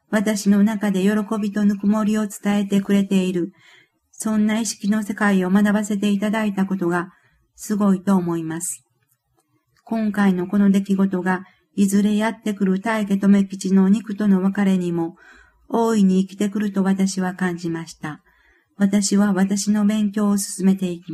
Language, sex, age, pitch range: Japanese, female, 50-69, 185-210 Hz